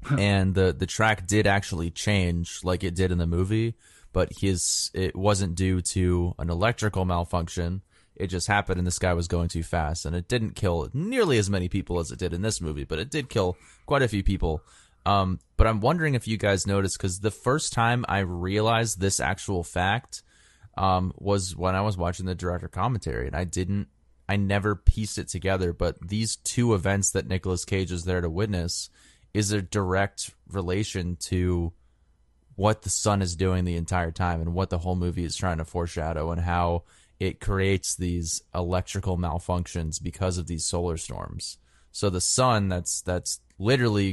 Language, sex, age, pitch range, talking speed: English, male, 20-39, 85-100 Hz, 190 wpm